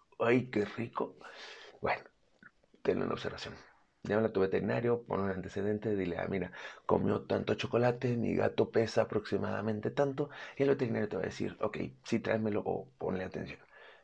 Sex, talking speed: male, 165 wpm